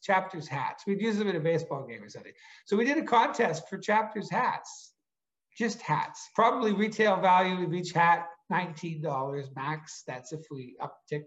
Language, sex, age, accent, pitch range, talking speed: English, male, 60-79, American, 155-200 Hz, 175 wpm